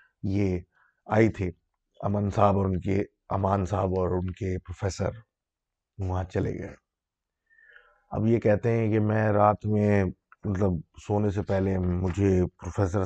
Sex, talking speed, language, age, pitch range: male, 140 wpm, Urdu, 30-49, 95-110 Hz